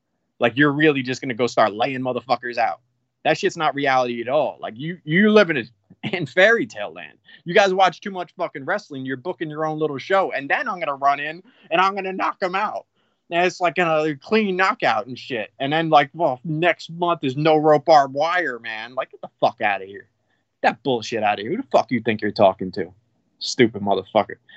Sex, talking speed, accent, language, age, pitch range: male, 230 wpm, American, English, 20-39, 120-165 Hz